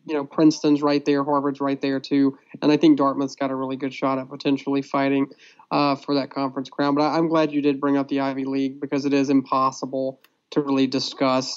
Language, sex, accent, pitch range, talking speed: English, male, American, 135-145 Hz, 225 wpm